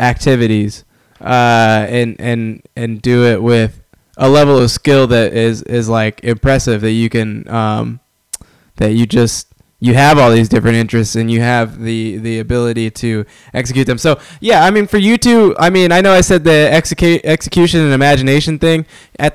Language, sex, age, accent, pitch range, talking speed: English, male, 10-29, American, 110-135 Hz, 185 wpm